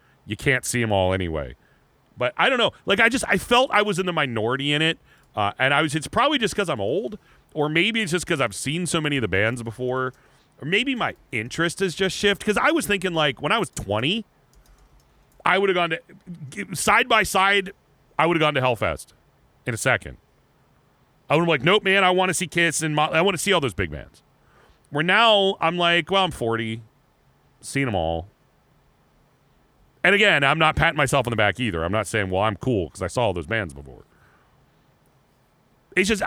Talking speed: 220 wpm